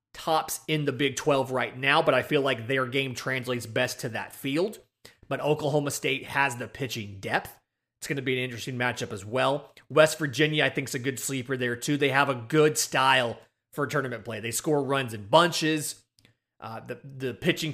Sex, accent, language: male, American, English